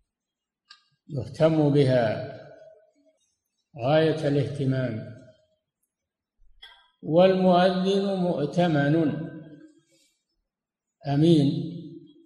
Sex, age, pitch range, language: male, 60-79, 140-185 Hz, Arabic